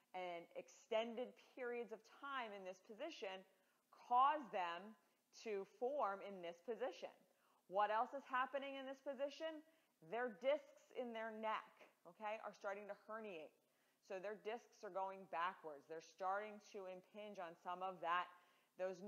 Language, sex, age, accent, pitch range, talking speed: English, female, 30-49, American, 185-235 Hz, 150 wpm